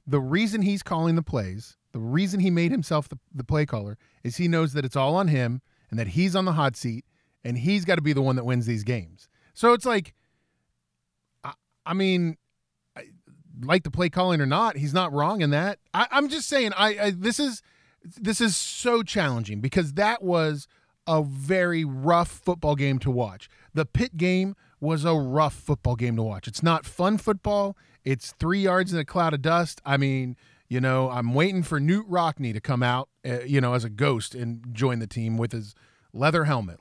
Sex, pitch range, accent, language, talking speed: male, 130-185 Hz, American, English, 210 wpm